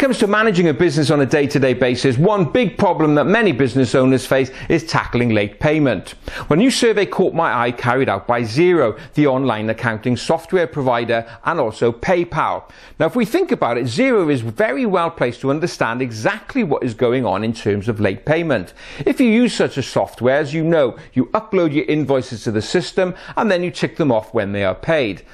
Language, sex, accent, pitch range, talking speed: English, male, British, 125-185 Hz, 215 wpm